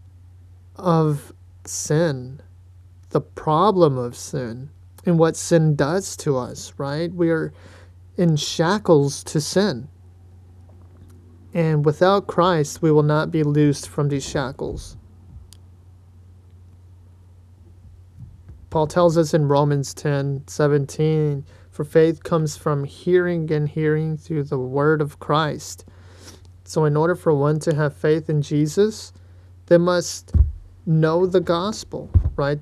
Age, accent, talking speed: 30-49, American, 120 wpm